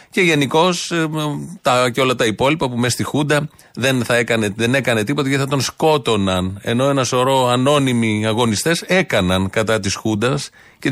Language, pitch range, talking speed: Greek, 110-140 Hz, 165 wpm